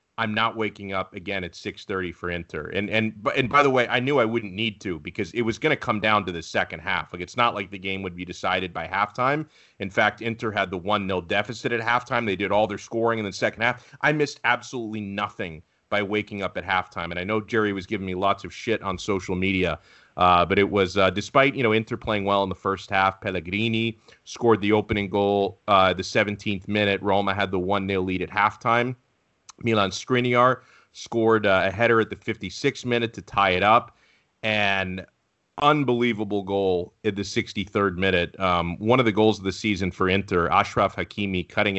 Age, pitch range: 30-49, 95-110 Hz